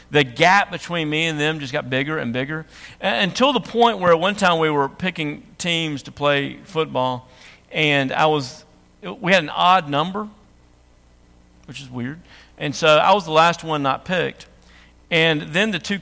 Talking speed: 185 wpm